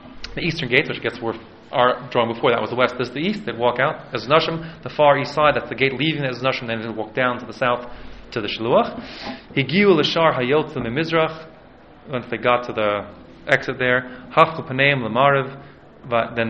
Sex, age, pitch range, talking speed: male, 30-49, 115-155 Hz, 195 wpm